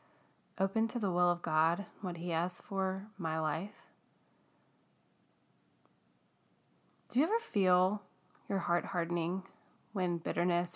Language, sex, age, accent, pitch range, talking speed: English, female, 20-39, American, 175-200 Hz, 115 wpm